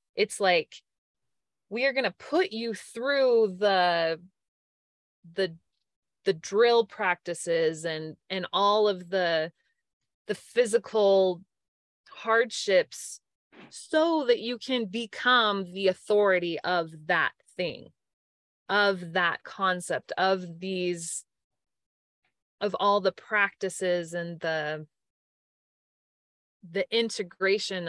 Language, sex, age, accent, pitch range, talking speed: English, female, 20-39, American, 175-225 Hz, 95 wpm